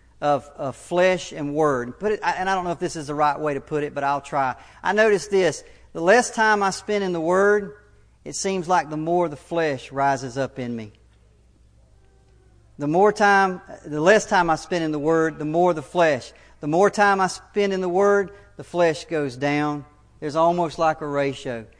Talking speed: 200 wpm